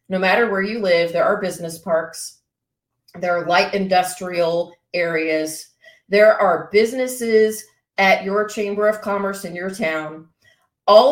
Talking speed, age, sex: 140 wpm, 40-59, female